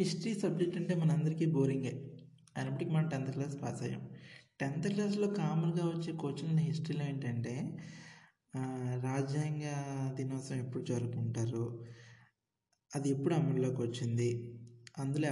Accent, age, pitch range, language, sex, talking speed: native, 20-39, 130-160 Hz, Telugu, male, 105 wpm